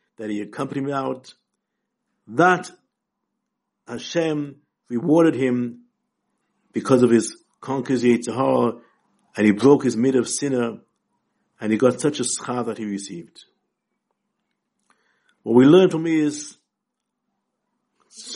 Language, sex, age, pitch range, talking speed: English, male, 60-79, 120-175 Hz, 120 wpm